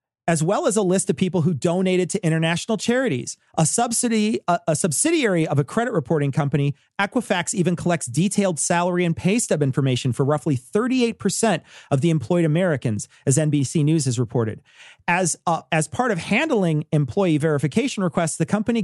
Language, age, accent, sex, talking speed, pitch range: English, 40-59, American, male, 170 wpm, 145-205 Hz